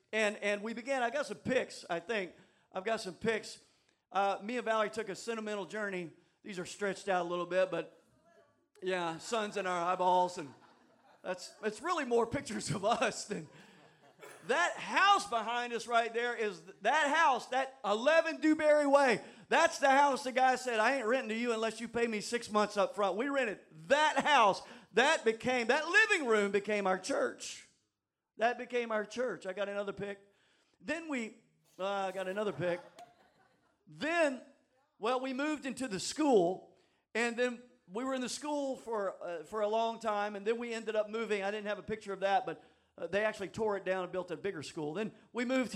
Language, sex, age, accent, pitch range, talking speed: English, male, 40-59, American, 195-245 Hz, 200 wpm